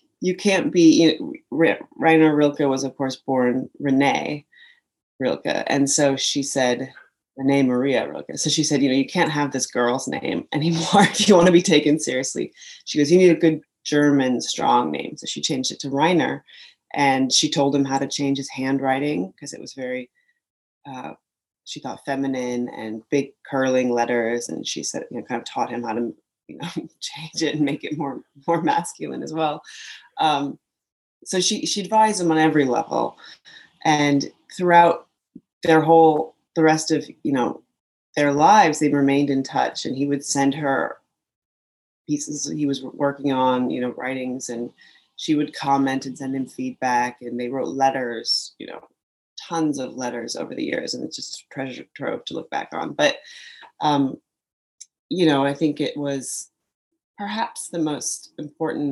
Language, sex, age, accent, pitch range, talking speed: English, female, 30-49, American, 130-160 Hz, 180 wpm